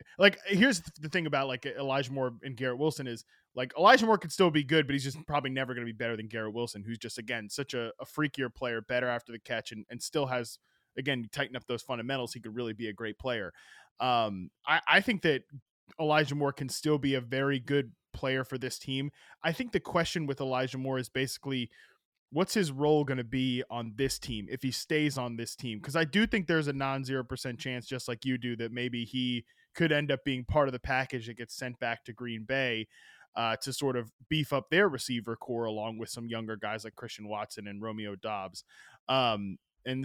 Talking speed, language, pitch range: 230 wpm, English, 120-150 Hz